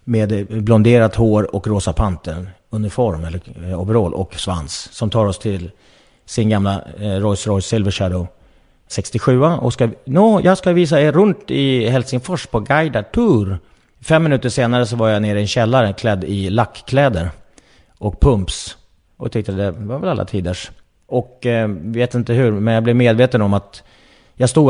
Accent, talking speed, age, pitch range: Swedish, 170 wpm, 30-49, 95-120 Hz